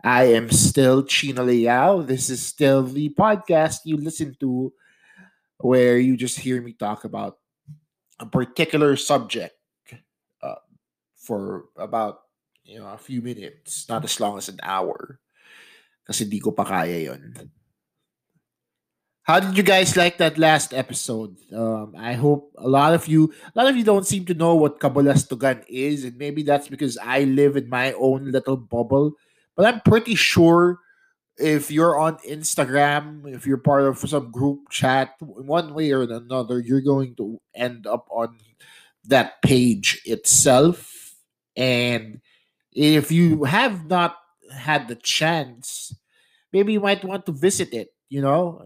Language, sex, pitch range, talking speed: English, male, 130-160 Hz, 145 wpm